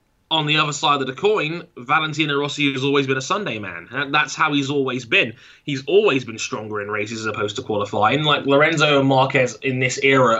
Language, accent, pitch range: English, British, 130-155 Hz